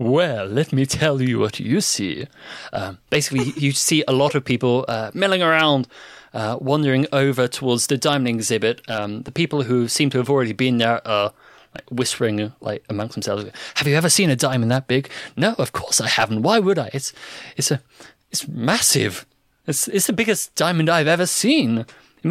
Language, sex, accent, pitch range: English, male, British, 115-160 Hz